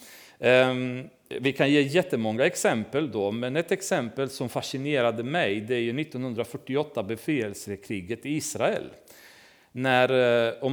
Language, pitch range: Swedish, 115-170 Hz